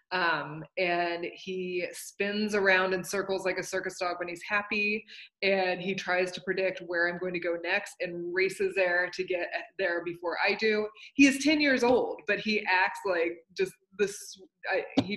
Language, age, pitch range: English, 20-39, 180-225 Hz